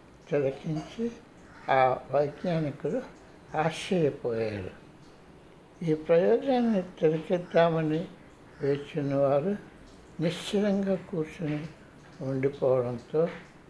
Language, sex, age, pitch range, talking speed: Telugu, male, 60-79, 140-175 Hz, 55 wpm